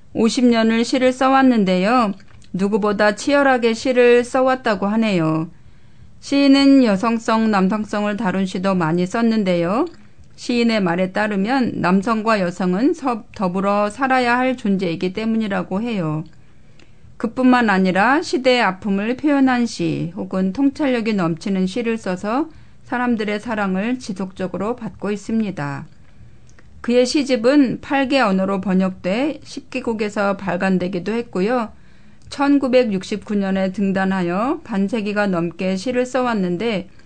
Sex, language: female, Korean